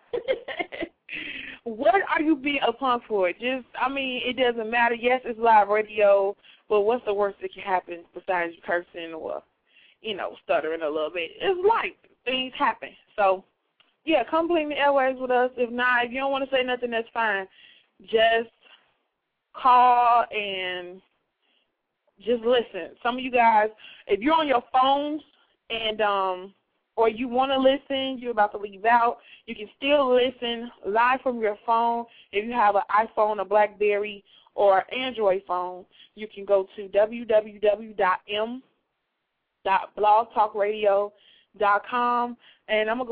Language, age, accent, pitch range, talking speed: English, 20-39, American, 205-250 Hz, 150 wpm